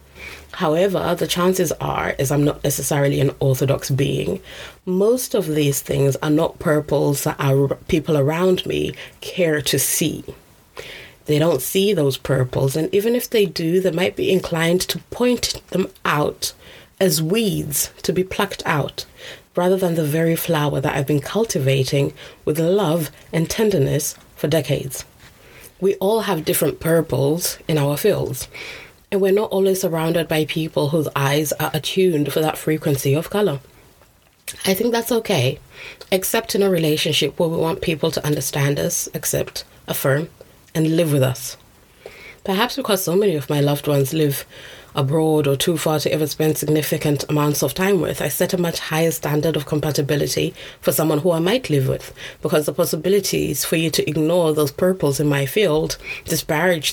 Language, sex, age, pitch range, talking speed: English, female, 20-39, 145-180 Hz, 165 wpm